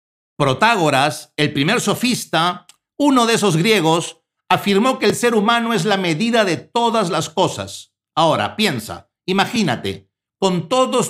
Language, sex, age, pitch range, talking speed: Spanish, male, 60-79, 130-195 Hz, 135 wpm